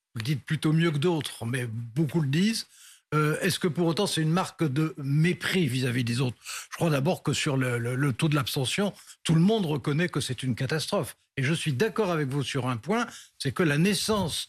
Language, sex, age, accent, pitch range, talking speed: French, male, 60-79, French, 135-180 Hz, 230 wpm